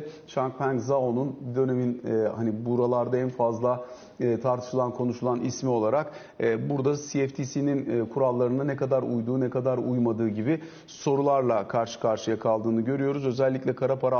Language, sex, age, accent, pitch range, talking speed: Turkish, male, 40-59, native, 120-140 Hz, 125 wpm